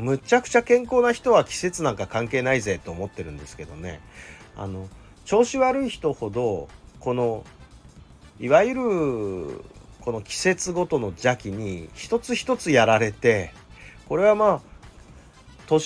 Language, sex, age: Japanese, male, 40-59